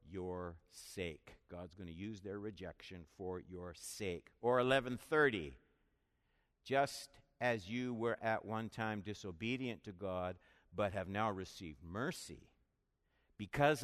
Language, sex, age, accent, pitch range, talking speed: English, male, 60-79, American, 95-155 Hz, 125 wpm